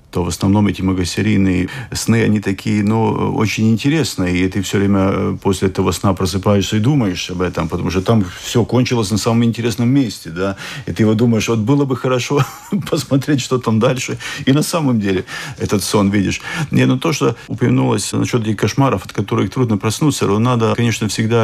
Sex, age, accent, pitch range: male, 40-59, native, 90-110 Hz